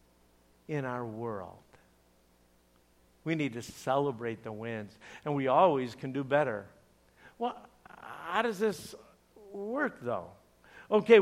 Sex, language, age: male, English, 60-79